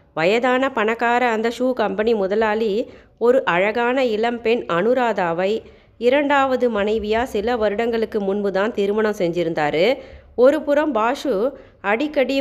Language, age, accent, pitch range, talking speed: Tamil, 30-49, native, 210-270 Hz, 100 wpm